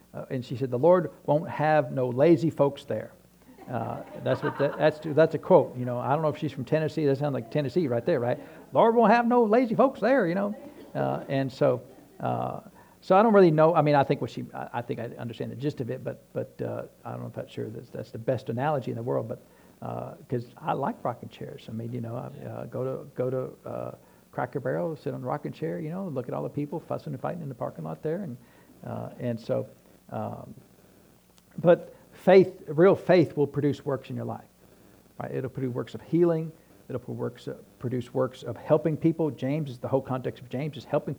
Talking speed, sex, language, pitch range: 240 wpm, male, English, 120-155 Hz